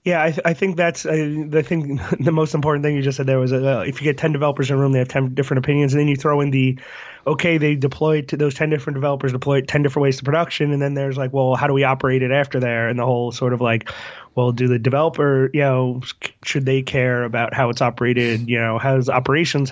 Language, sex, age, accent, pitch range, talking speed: English, male, 20-39, American, 130-150 Hz, 270 wpm